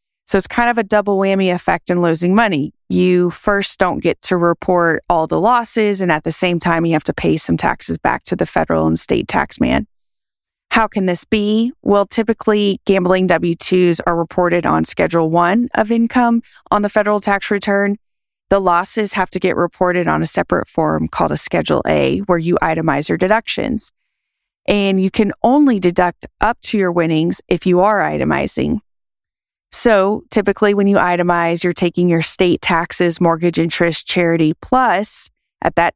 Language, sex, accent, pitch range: English, female, American, 170-210 Hz